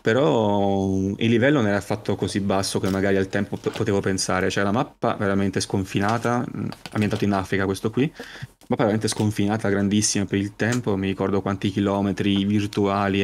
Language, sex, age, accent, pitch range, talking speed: Italian, male, 20-39, native, 100-110 Hz, 170 wpm